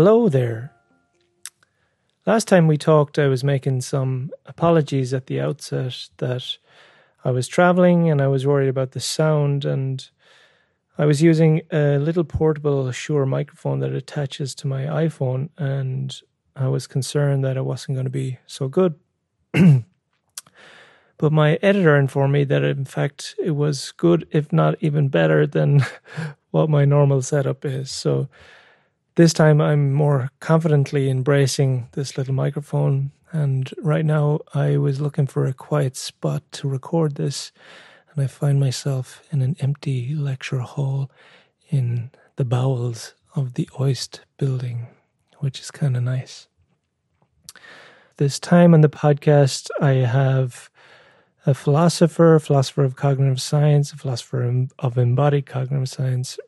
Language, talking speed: English, 145 wpm